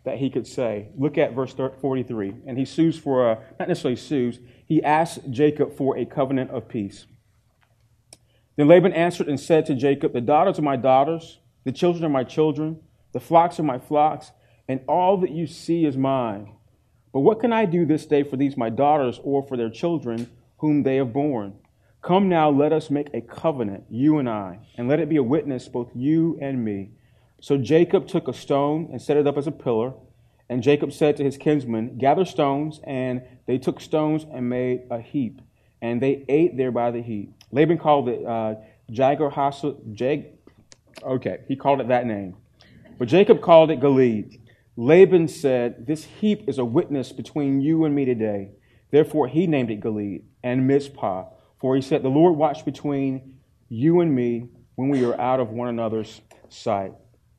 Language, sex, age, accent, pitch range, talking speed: English, male, 40-59, American, 120-150 Hz, 190 wpm